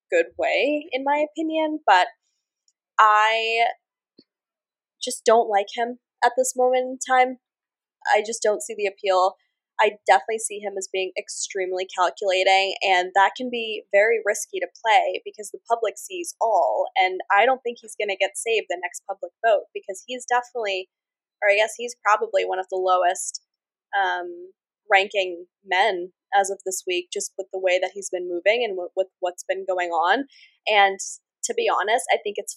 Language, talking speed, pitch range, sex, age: English, 180 wpm, 185-235 Hz, female, 10-29